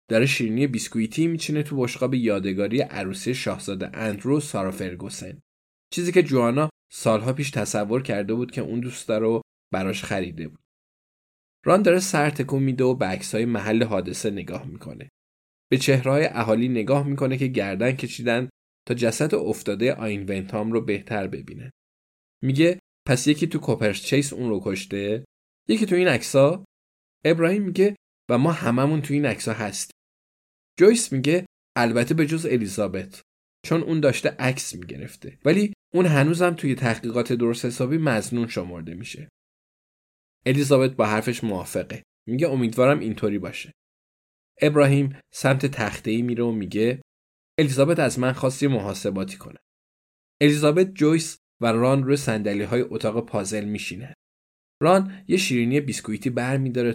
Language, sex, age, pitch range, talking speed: Persian, male, 10-29, 105-140 Hz, 140 wpm